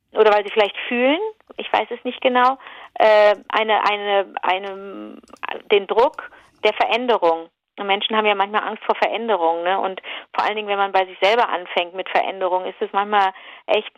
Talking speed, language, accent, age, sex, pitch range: 175 wpm, German, German, 40-59, female, 200-245 Hz